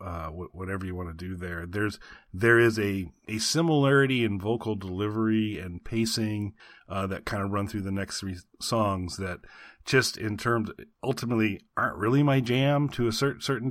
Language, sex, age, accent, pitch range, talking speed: English, male, 40-59, American, 95-110 Hz, 175 wpm